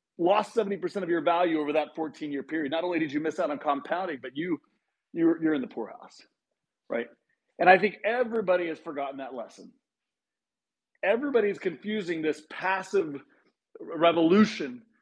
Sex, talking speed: male, 155 wpm